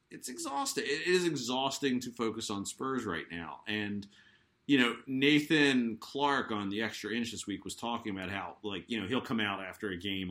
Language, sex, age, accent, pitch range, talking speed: English, male, 30-49, American, 100-125 Hz, 205 wpm